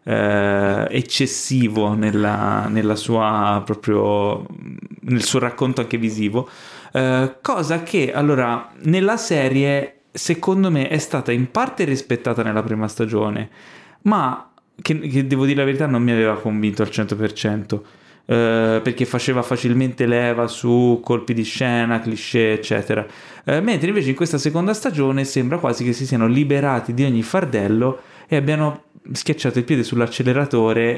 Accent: native